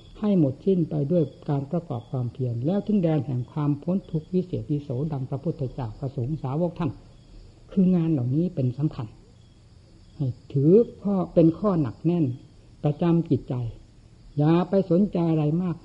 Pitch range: 120-170 Hz